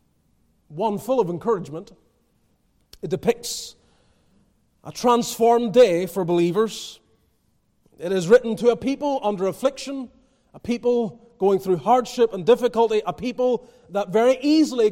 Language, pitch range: English, 185-245 Hz